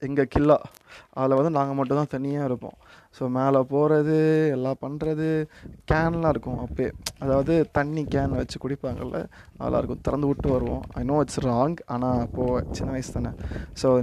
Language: Tamil